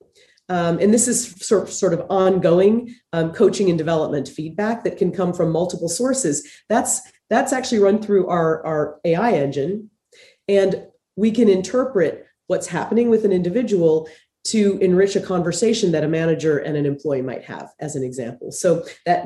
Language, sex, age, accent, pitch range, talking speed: English, female, 30-49, American, 160-210 Hz, 165 wpm